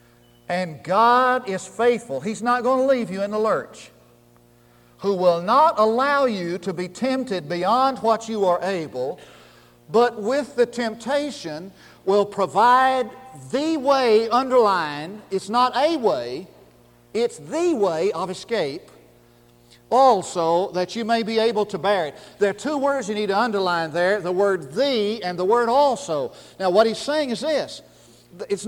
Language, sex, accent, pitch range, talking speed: English, male, American, 180-255 Hz, 160 wpm